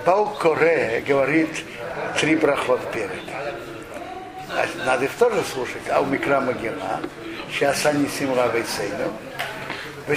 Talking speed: 105 wpm